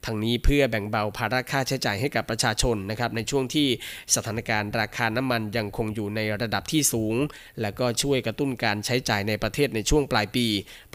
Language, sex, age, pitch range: Thai, male, 20-39, 110-130 Hz